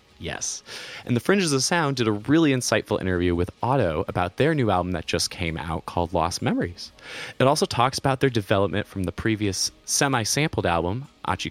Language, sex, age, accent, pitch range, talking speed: English, male, 20-39, American, 90-135 Hz, 190 wpm